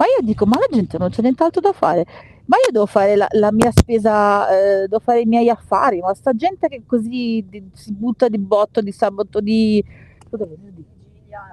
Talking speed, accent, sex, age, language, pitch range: 215 wpm, native, female, 40-59, Italian, 200-255 Hz